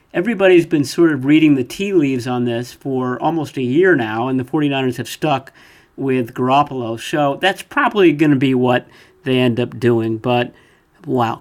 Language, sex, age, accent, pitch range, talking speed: English, male, 50-69, American, 125-155 Hz, 185 wpm